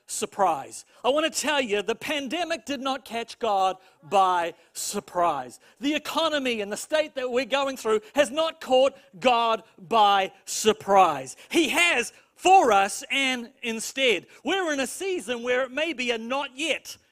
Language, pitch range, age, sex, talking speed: English, 225-310 Hz, 40-59, male, 160 wpm